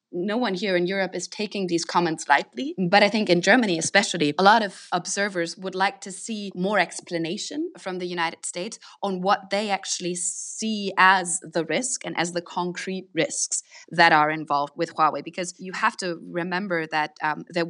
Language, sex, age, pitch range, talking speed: English, female, 20-39, 165-200 Hz, 190 wpm